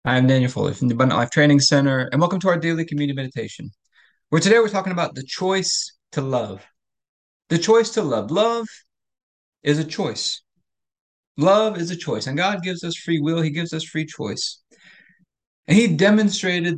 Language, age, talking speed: English, 30-49, 180 wpm